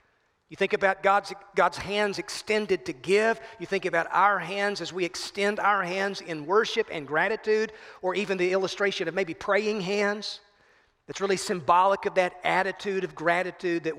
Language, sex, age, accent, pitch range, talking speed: English, male, 40-59, American, 170-215 Hz, 170 wpm